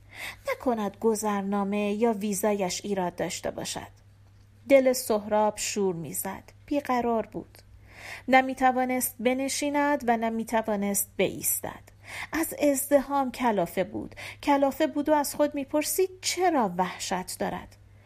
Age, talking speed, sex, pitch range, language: 40-59, 115 wpm, female, 195-260 Hz, Persian